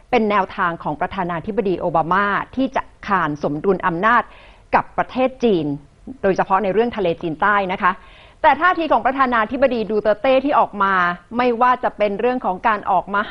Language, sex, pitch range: Thai, female, 185-260 Hz